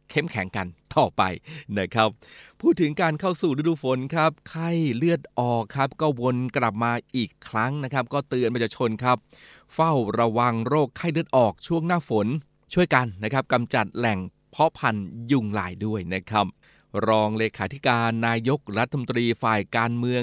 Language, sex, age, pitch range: Thai, male, 20-39, 110-135 Hz